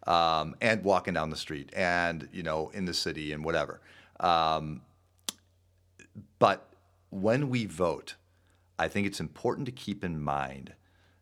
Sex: male